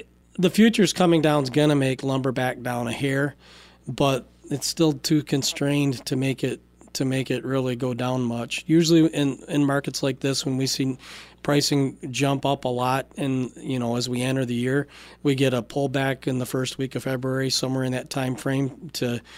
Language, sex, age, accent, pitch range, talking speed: English, male, 40-59, American, 125-140 Hz, 200 wpm